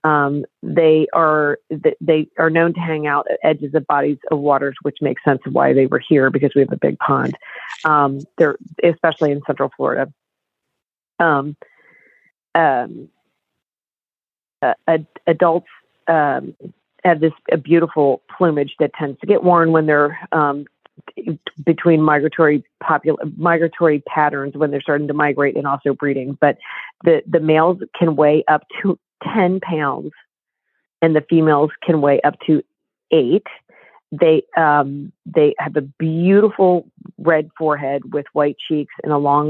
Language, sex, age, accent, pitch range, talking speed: English, female, 40-59, American, 145-170 Hz, 150 wpm